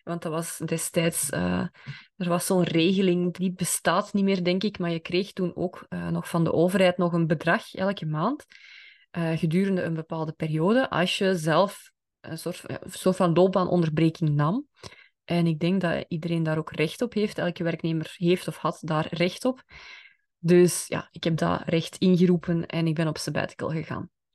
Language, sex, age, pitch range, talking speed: Dutch, female, 20-39, 165-190 Hz, 190 wpm